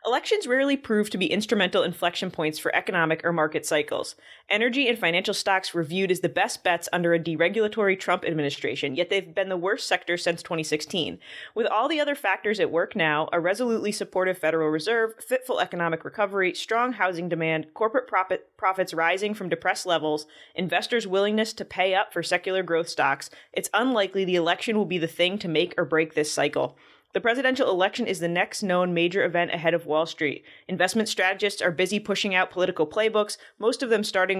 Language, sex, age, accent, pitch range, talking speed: English, female, 20-39, American, 170-210 Hz, 190 wpm